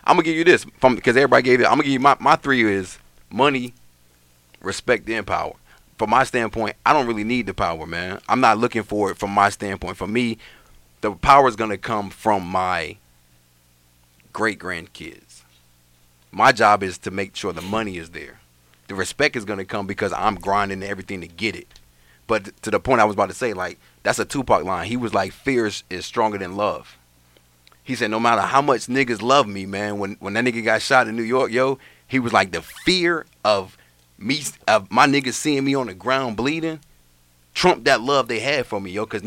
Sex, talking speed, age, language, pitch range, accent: male, 220 wpm, 30-49, English, 80-125 Hz, American